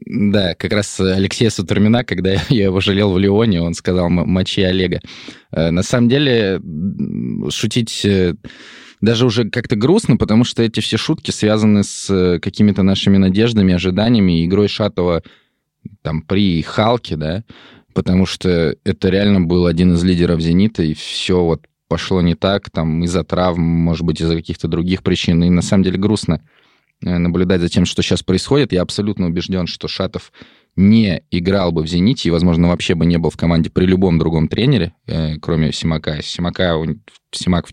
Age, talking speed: 20-39, 160 wpm